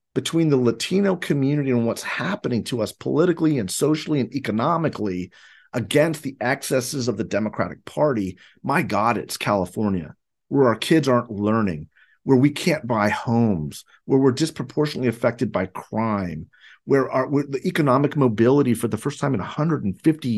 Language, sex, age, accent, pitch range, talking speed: English, male, 40-59, American, 125-175 Hz, 155 wpm